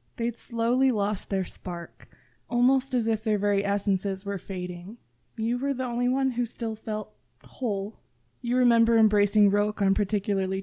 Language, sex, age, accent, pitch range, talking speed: English, female, 20-39, American, 195-225 Hz, 160 wpm